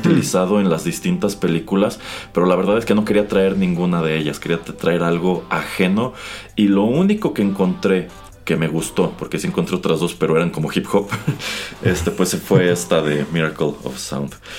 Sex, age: male, 30-49